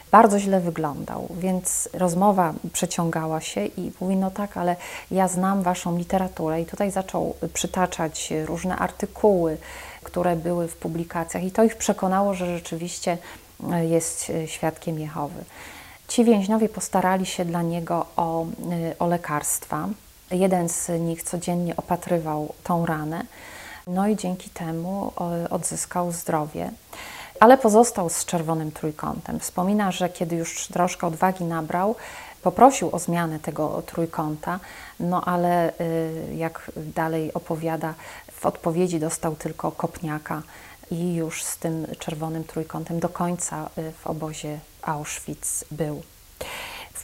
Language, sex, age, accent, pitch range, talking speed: Polish, female, 30-49, native, 165-190 Hz, 125 wpm